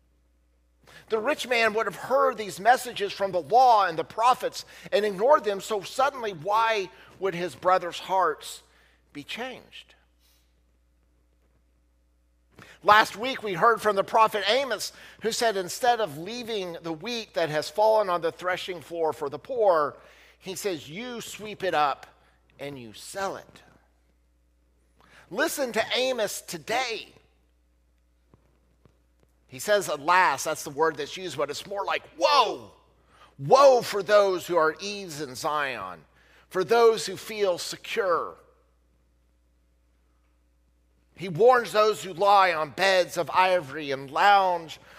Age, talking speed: 50-69, 135 wpm